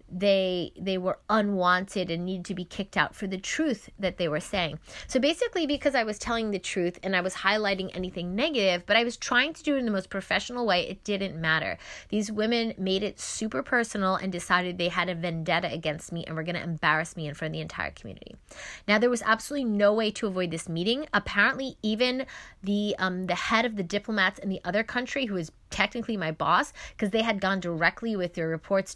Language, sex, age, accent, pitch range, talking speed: English, female, 20-39, American, 180-220 Hz, 225 wpm